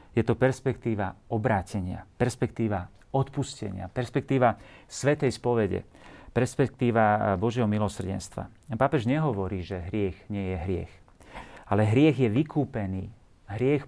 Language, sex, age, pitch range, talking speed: Slovak, male, 40-59, 100-120 Hz, 105 wpm